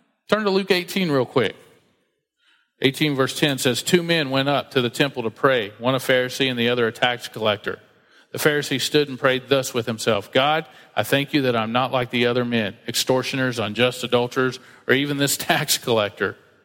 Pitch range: 120-155 Hz